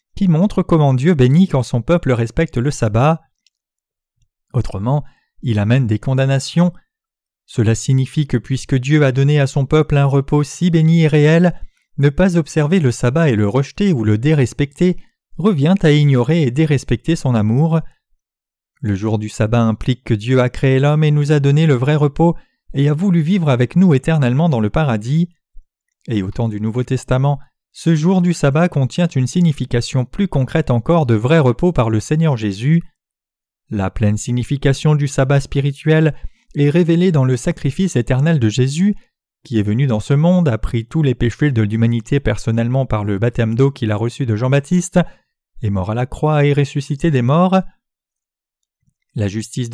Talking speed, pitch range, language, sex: 180 wpm, 120-160 Hz, French, male